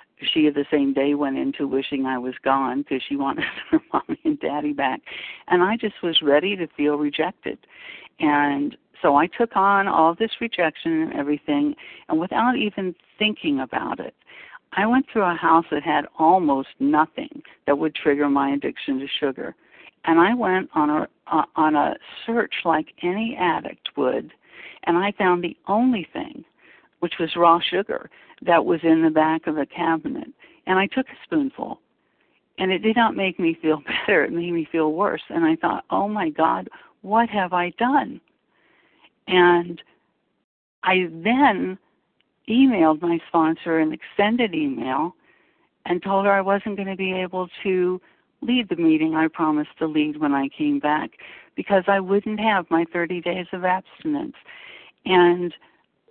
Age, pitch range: 60-79, 155-235 Hz